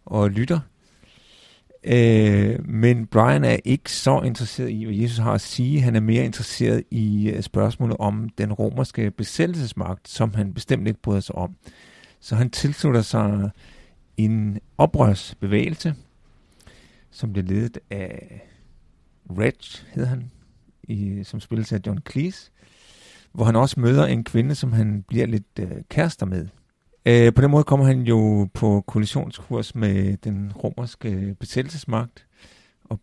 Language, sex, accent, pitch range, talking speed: Danish, male, native, 100-125 Hz, 140 wpm